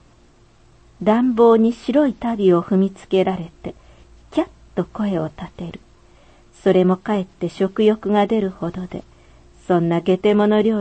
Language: Japanese